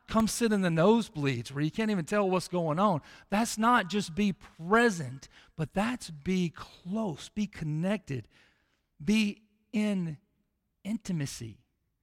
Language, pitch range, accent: English, 150-205 Hz, American